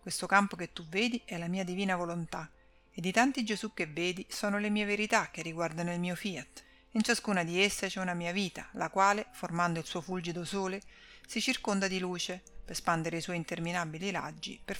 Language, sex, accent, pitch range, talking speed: Italian, female, native, 170-210 Hz, 205 wpm